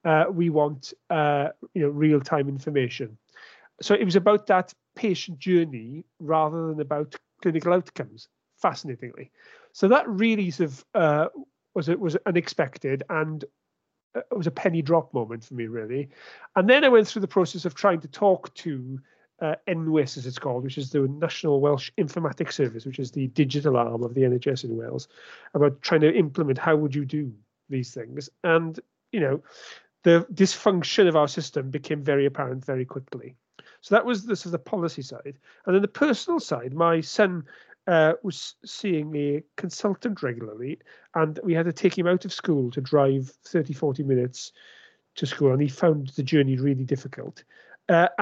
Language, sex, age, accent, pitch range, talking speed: English, male, 40-59, British, 140-190 Hz, 175 wpm